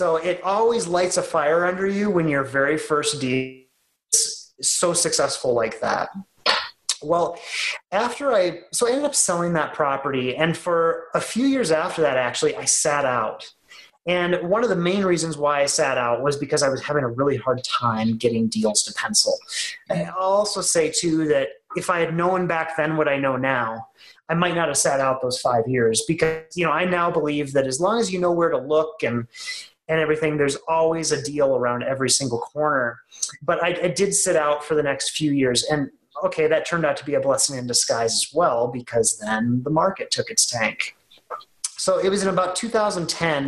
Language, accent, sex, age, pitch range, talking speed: English, American, male, 30-49, 135-180 Hz, 205 wpm